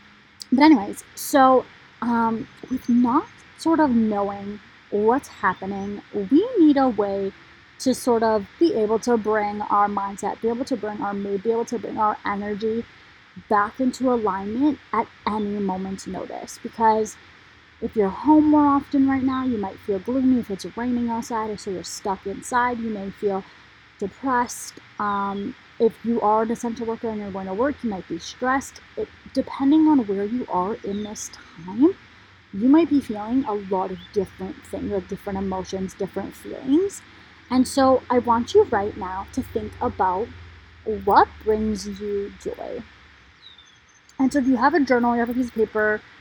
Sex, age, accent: female, 30-49, American